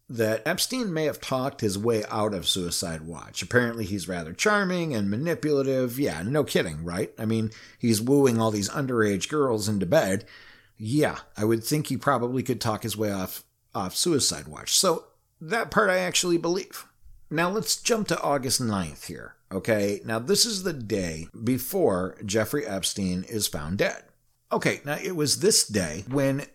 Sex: male